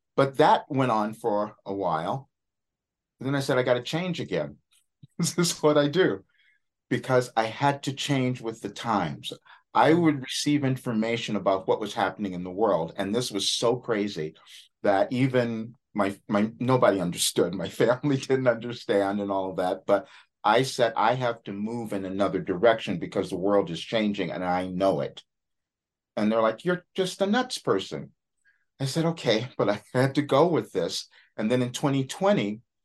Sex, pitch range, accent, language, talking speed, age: male, 100-140 Hz, American, English, 185 wpm, 50-69